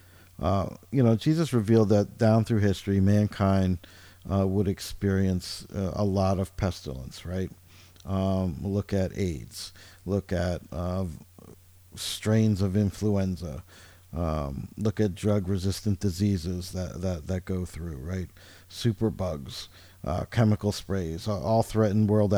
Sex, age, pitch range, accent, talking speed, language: male, 50-69, 90-105 Hz, American, 130 wpm, English